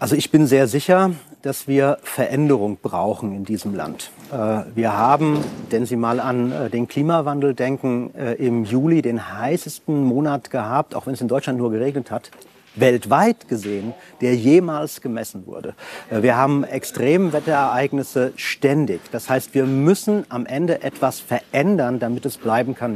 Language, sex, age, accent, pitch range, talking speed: German, male, 40-59, German, 120-150 Hz, 150 wpm